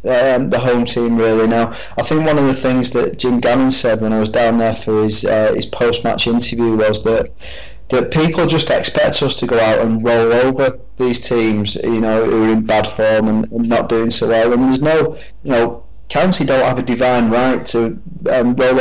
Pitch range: 115-130 Hz